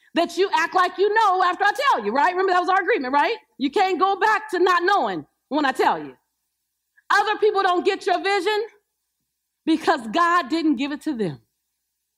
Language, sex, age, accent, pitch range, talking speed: English, female, 40-59, American, 230-325 Hz, 200 wpm